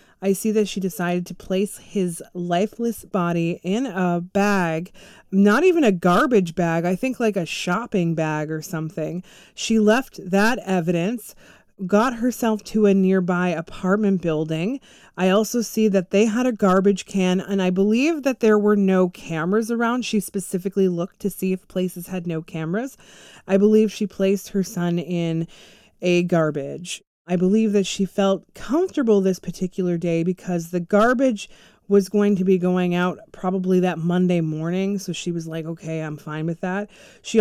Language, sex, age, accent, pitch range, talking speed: English, female, 30-49, American, 175-210 Hz, 170 wpm